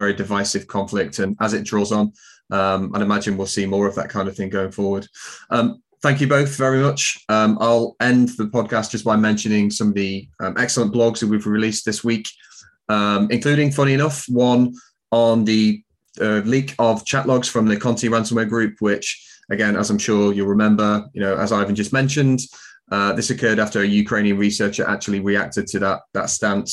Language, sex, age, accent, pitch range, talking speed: English, male, 20-39, British, 105-125 Hz, 200 wpm